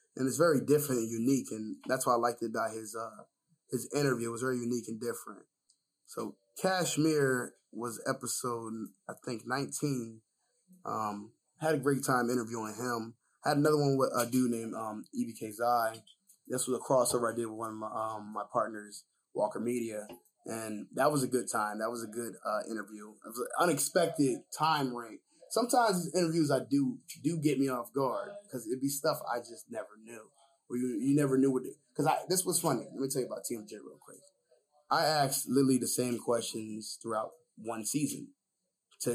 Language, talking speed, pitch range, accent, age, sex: English, 195 wpm, 115-150 Hz, American, 10-29, male